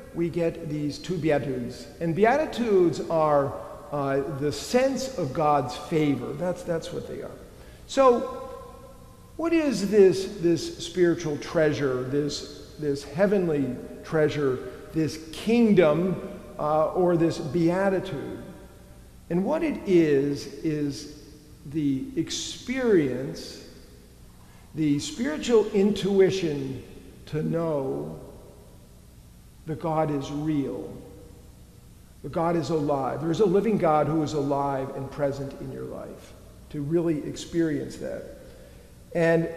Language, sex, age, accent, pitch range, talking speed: English, male, 50-69, American, 145-195 Hz, 110 wpm